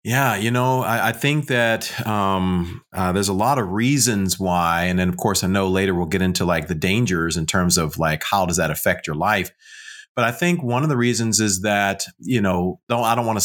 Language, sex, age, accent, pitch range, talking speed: English, male, 40-59, American, 95-115 Hz, 240 wpm